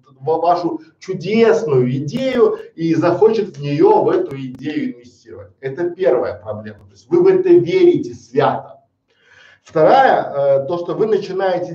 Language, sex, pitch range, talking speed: Russian, male, 155-230 Hz, 135 wpm